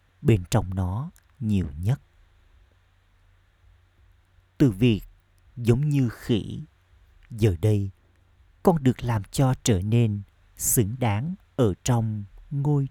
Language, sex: Vietnamese, male